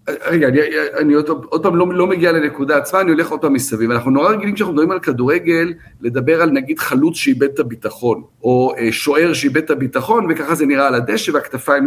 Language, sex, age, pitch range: Hebrew, male, 50-69, 130-175 Hz